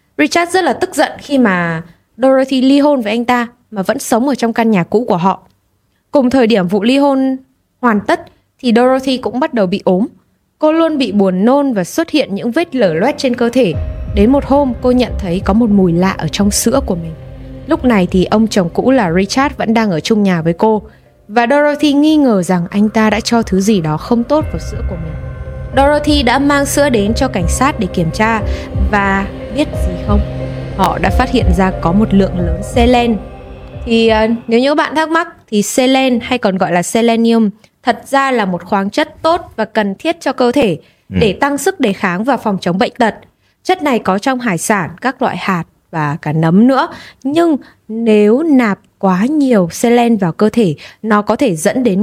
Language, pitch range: Vietnamese, 195-270 Hz